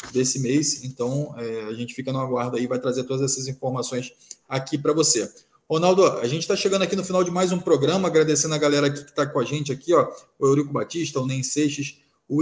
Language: Portuguese